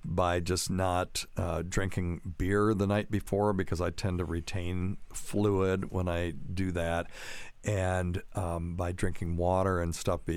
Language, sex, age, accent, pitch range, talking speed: English, male, 60-79, American, 90-110 Hz, 150 wpm